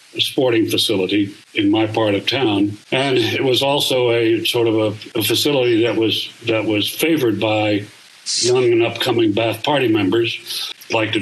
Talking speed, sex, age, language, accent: 170 wpm, male, 60-79, English, American